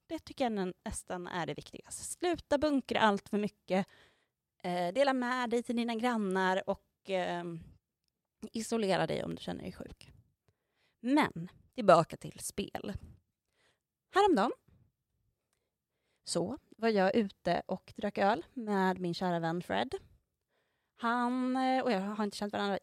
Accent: Norwegian